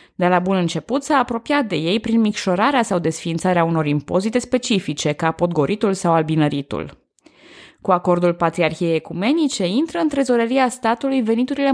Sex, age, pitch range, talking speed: female, 20-39, 165-230 Hz, 145 wpm